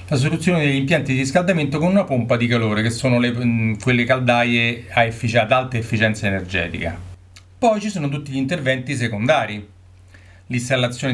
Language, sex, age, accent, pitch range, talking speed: Italian, male, 40-59, native, 105-140 Hz, 145 wpm